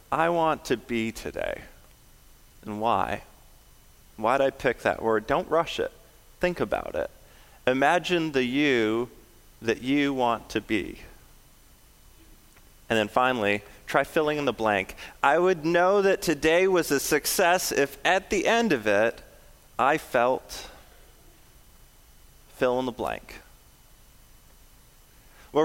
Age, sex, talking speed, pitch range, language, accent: 30-49, male, 130 wpm, 125-180 Hz, English, American